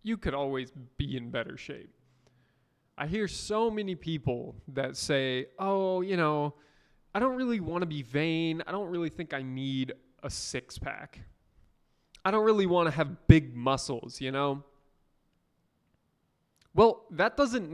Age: 20-39